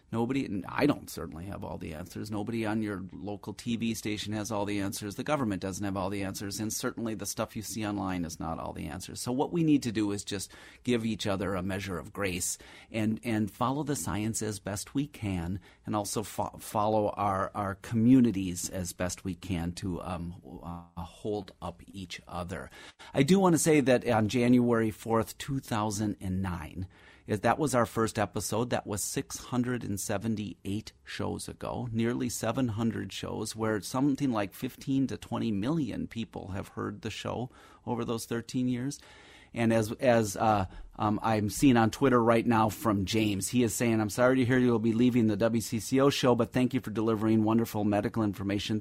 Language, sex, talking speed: English, male, 190 wpm